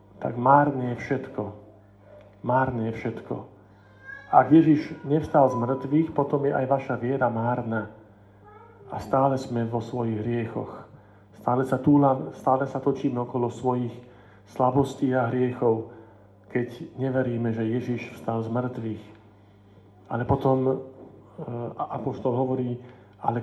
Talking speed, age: 125 wpm, 50-69